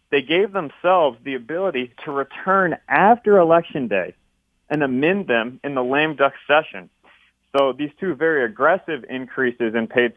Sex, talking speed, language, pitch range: male, 150 wpm, English, 120-150 Hz